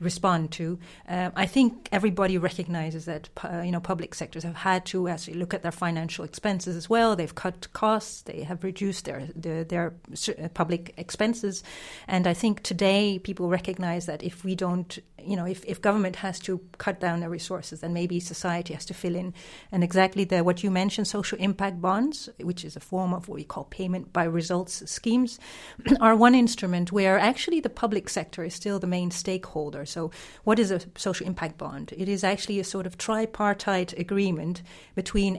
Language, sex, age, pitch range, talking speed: English, female, 40-59, 170-200 Hz, 190 wpm